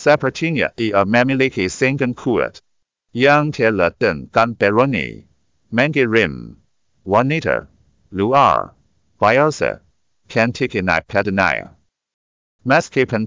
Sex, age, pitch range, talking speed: male, 50-69, 105-130 Hz, 85 wpm